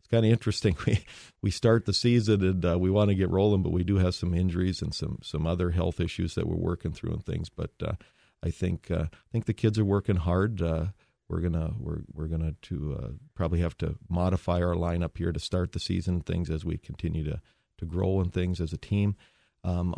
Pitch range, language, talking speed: 80-100 Hz, English, 245 wpm